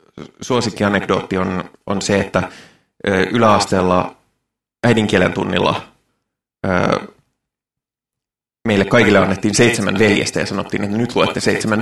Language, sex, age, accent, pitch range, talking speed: Finnish, male, 20-39, native, 100-120 Hz, 110 wpm